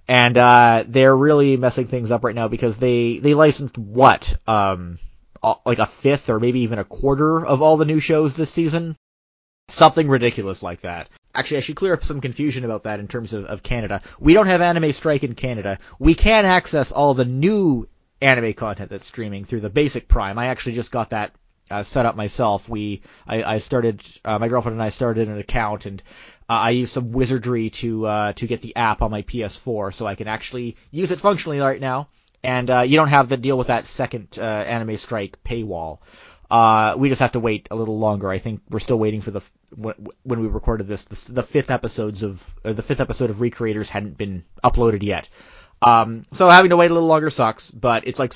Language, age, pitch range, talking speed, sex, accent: English, 20-39, 105-135 Hz, 215 wpm, male, American